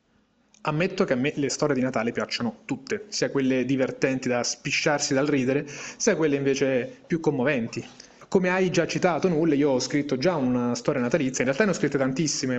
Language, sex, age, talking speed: Italian, male, 30-49, 190 wpm